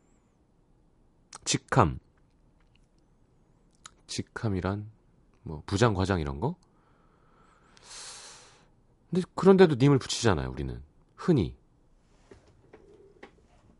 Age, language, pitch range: 40-59, Korean, 95-150 Hz